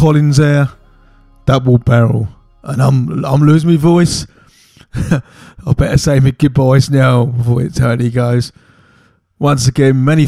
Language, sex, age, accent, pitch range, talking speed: English, male, 20-39, British, 110-130 Hz, 135 wpm